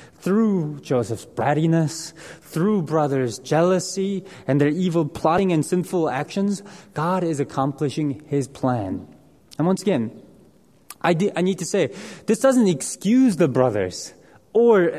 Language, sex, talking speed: English, male, 125 wpm